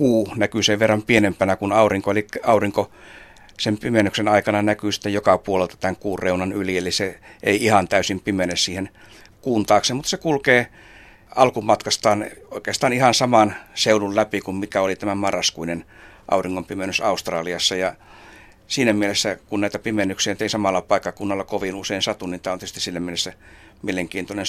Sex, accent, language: male, native, Finnish